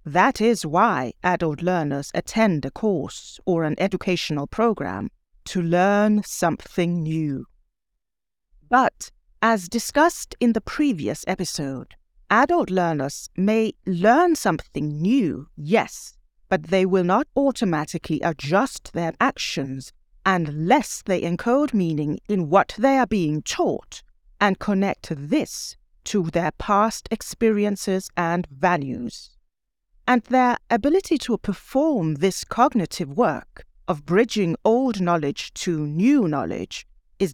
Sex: female